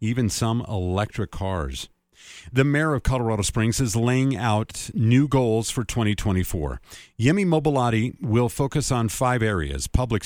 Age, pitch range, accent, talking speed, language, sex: 40-59, 100-130 Hz, American, 140 wpm, English, male